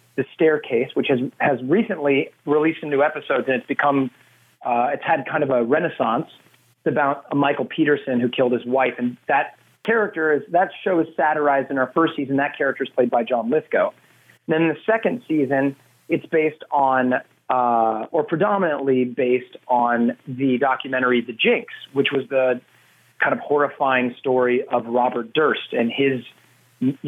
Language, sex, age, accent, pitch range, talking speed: English, male, 30-49, American, 130-160 Hz, 175 wpm